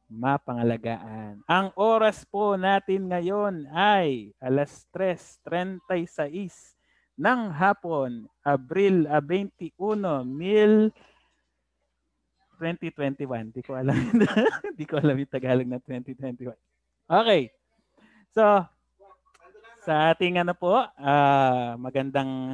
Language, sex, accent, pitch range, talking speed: Filipino, male, native, 125-180 Hz, 85 wpm